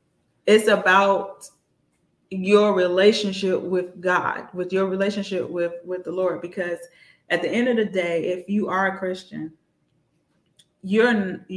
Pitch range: 175-200 Hz